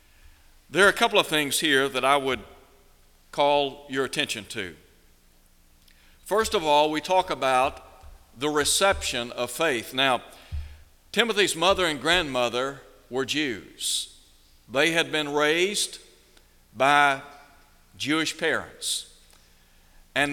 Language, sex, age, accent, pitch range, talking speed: English, male, 60-79, American, 120-165 Hz, 115 wpm